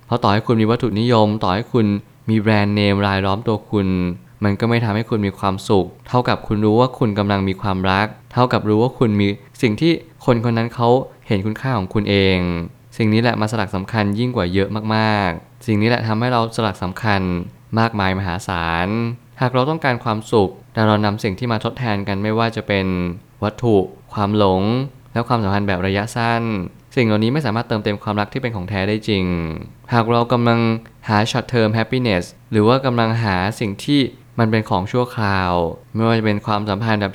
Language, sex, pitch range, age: Thai, male, 100-120 Hz, 20-39